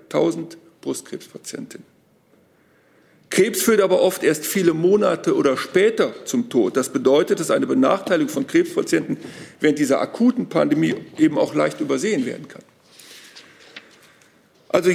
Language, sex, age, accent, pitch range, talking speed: German, male, 50-69, German, 185-295 Hz, 120 wpm